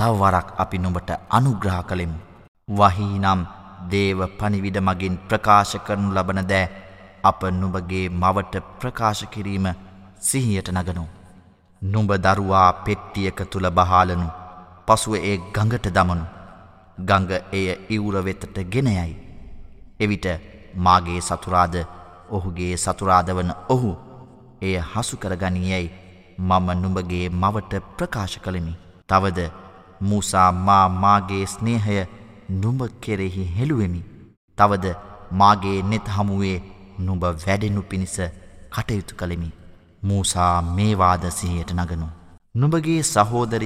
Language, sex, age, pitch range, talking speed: Arabic, male, 20-39, 90-105 Hz, 70 wpm